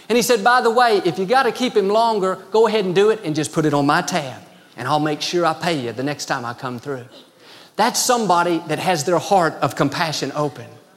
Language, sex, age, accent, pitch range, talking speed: English, male, 40-59, American, 150-220 Hz, 255 wpm